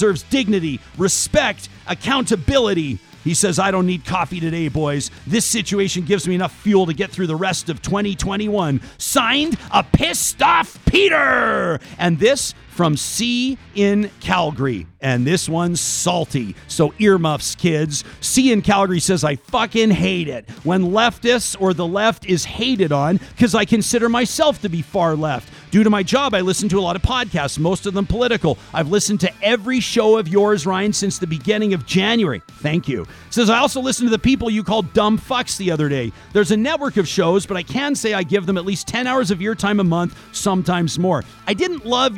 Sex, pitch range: male, 175-240 Hz